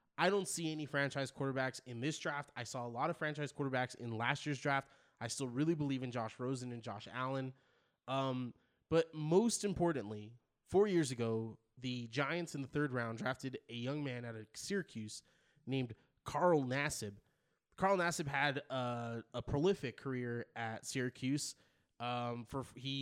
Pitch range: 125-155 Hz